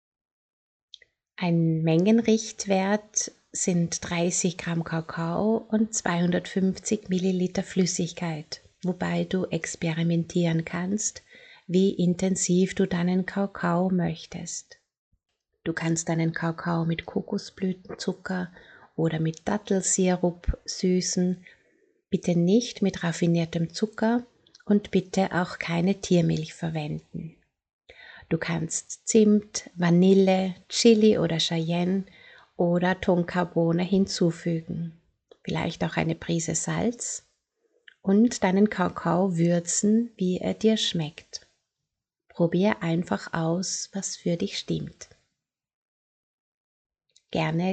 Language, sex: German, female